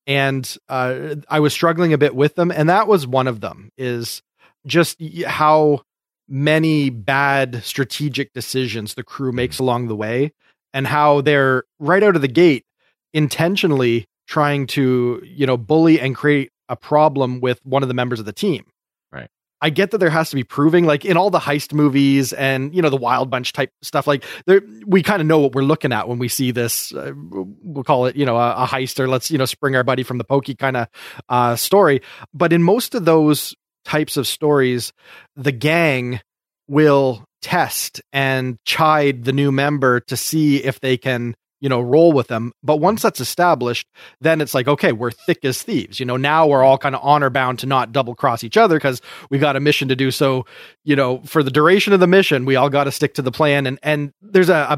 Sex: male